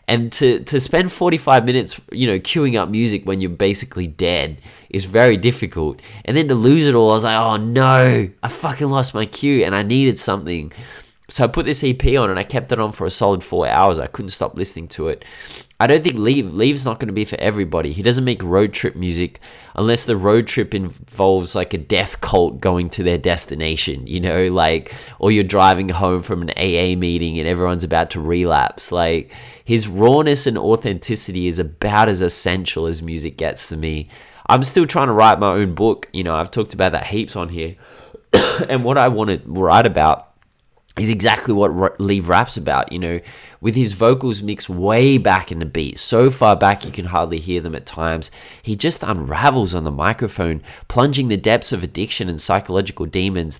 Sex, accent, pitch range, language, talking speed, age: male, Australian, 85-120 Hz, English, 210 wpm, 20-39